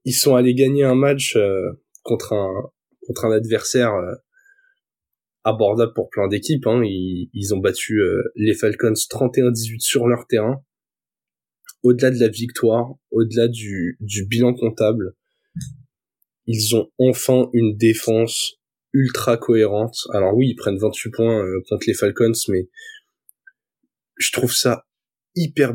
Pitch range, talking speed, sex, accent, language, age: 110-135 Hz, 140 wpm, male, French, French, 20-39